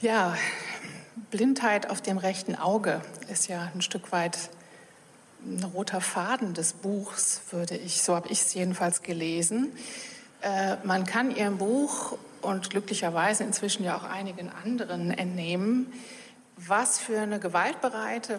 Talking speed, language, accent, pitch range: 135 wpm, German, German, 185-235 Hz